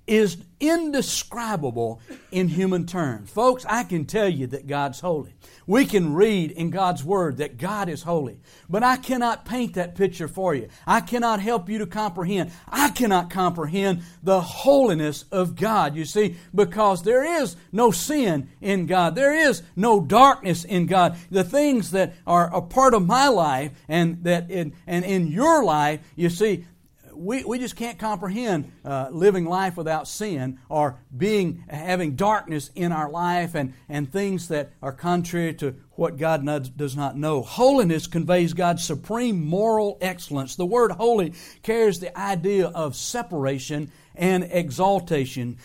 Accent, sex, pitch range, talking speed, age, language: American, male, 160-215 Hz, 160 wpm, 60-79, English